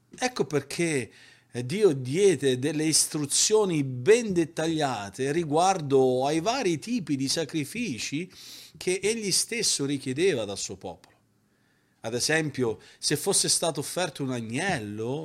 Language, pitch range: Italian, 125-175 Hz